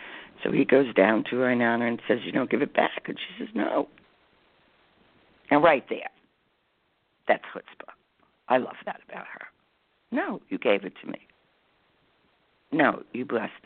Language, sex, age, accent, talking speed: English, female, 60-79, American, 160 wpm